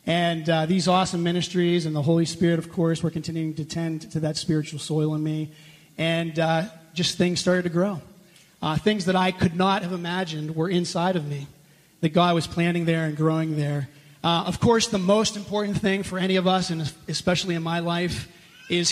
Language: English